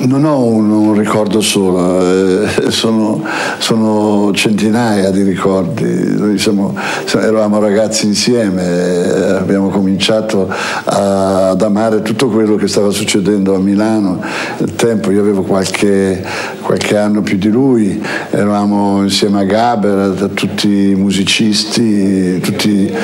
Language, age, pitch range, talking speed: Italian, 60-79, 100-110 Hz, 125 wpm